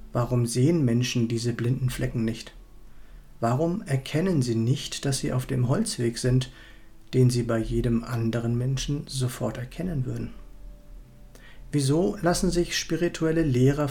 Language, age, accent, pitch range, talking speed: German, 50-69, German, 115-140 Hz, 135 wpm